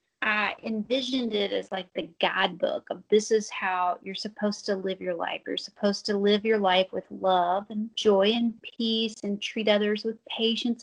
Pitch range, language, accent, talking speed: 190-225 Hz, English, American, 190 wpm